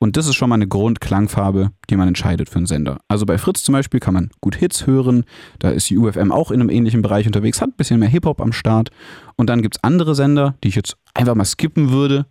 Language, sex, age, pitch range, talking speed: German, male, 30-49, 100-130 Hz, 260 wpm